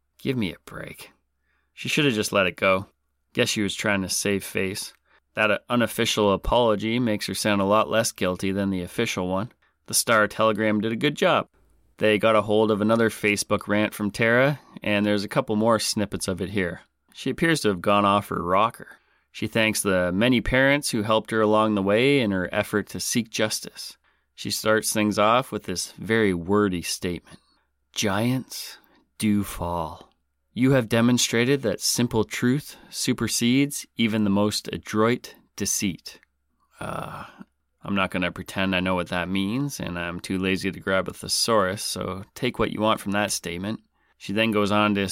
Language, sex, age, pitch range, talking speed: English, male, 30-49, 100-115 Hz, 185 wpm